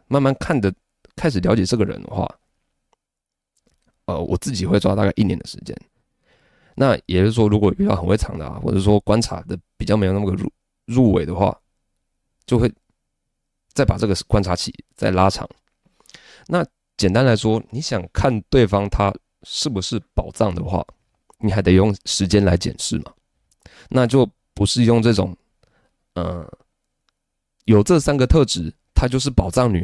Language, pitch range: Chinese, 90-120 Hz